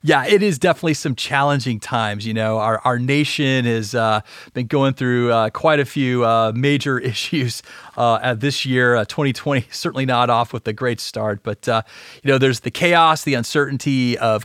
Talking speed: 195 wpm